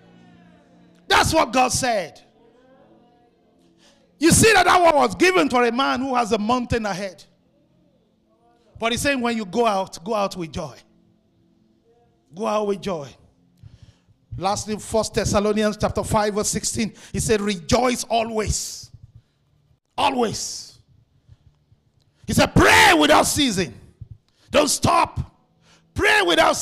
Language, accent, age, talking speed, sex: English, Nigerian, 50-69, 125 wpm, male